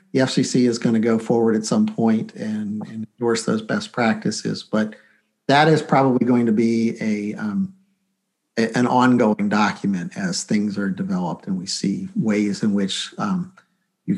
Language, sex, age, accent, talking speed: English, male, 50-69, American, 175 wpm